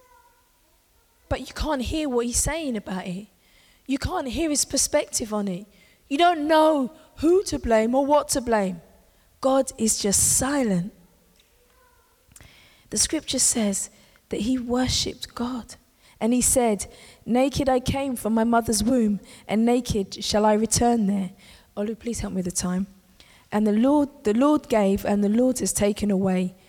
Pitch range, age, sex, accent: 200-275 Hz, 20-39, female, British